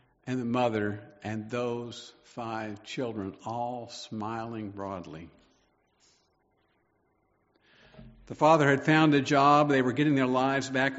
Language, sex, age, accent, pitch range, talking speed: English, male, 50-69, American, 110-140 Hz, 120 wpm